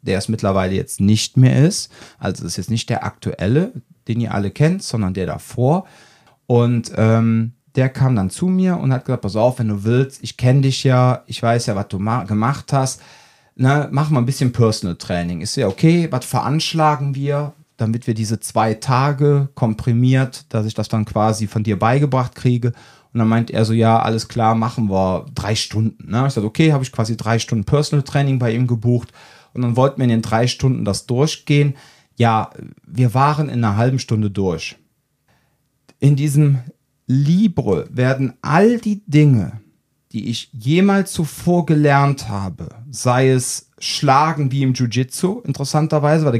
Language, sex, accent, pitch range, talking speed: German, male, German, 115-145 Hz, 185 wpm